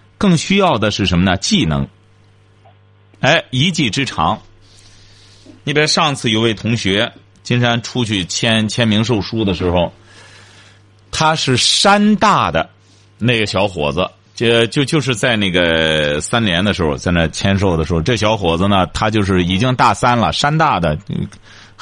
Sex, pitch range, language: male, 95-140 Hz, Chinese